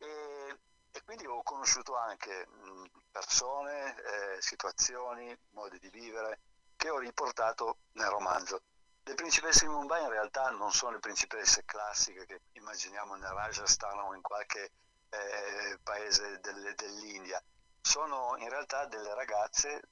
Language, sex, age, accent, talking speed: Italian, male, 50-69, native, 130 wpm